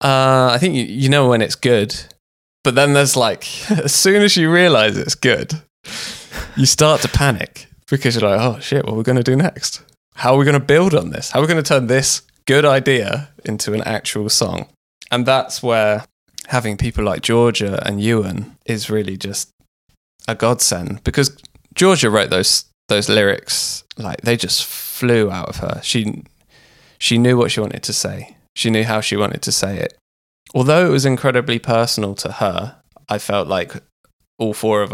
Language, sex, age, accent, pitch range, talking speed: English, male, 20-39, British, 105-130 Hz, 195 wpm